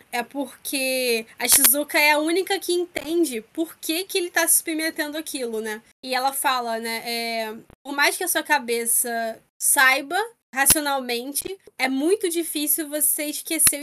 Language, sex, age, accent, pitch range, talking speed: Portuguese, female, 10-29, Brazilian, 240-300 Hz, 155 wpm